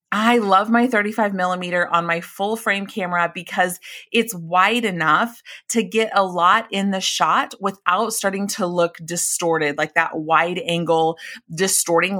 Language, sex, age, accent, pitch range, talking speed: English, female, 30-49, American, 170-225 Hz, 150 wpm